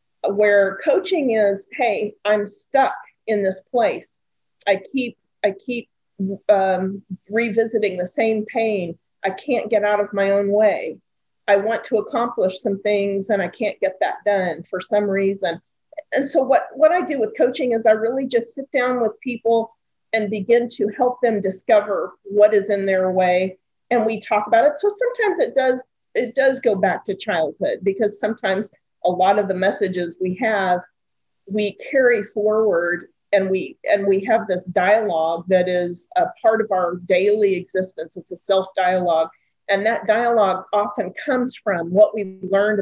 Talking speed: 170 wpm